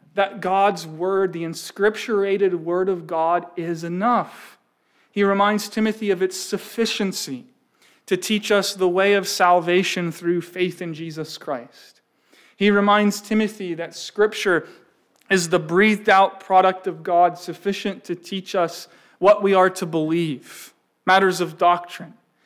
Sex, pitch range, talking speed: male, 175-215 Hz, 140 wpm